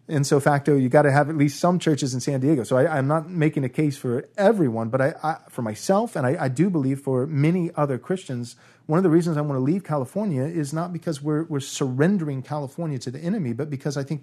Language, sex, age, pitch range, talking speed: English, male, 30-49, 120-155 Hz, 255 wpm